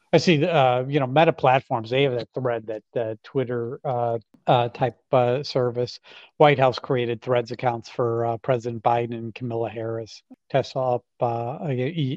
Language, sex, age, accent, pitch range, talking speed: English, male, 50-69, American, 125-145 Hz, 175 wpm